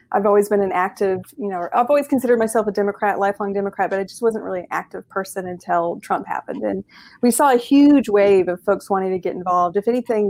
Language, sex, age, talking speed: English, female, 30-49, 235 wpm